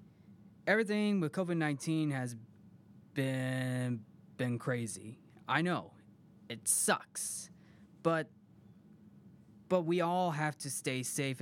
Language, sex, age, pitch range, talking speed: English, male, 20-39, 120-170 Hz, 105 wpm